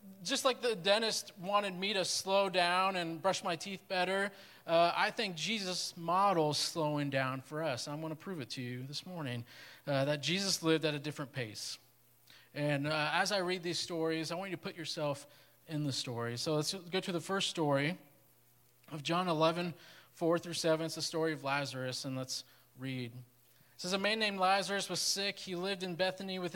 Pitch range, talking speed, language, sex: 145-185 Hz, 205 wpm, English, male